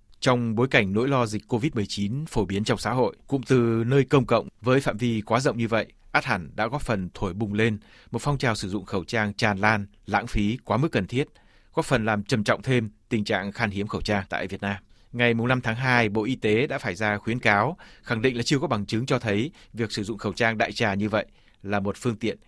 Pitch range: 105-125 Hz